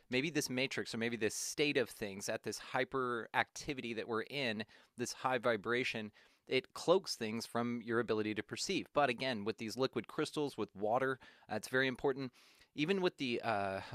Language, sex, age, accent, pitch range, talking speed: English, male, 30-49, American, 110-135 Hz, 185 wpm